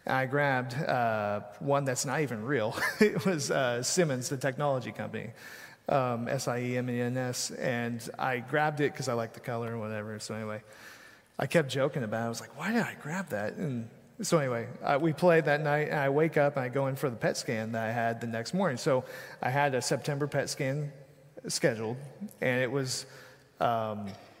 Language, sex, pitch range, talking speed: English, male, 115-145 Hz, 210 wpm